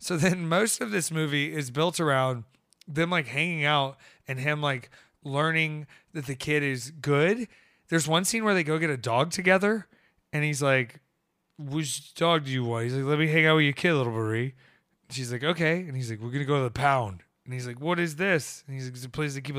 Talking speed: 240 wpm